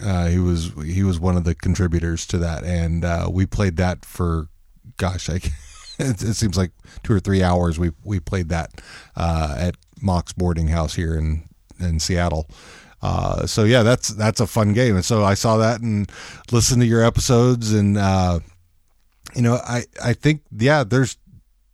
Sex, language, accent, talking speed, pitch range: male, English, American, 180 wpm, 85-115 Hz